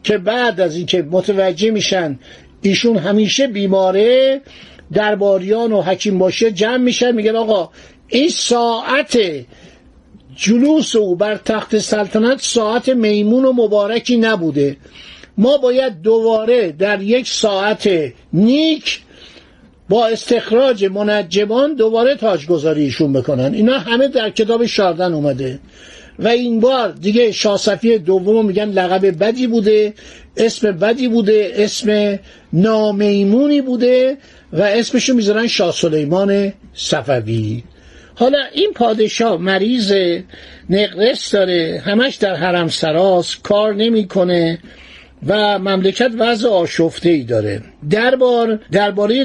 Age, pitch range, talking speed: 50-69, 185-235 Hz, 110 wpm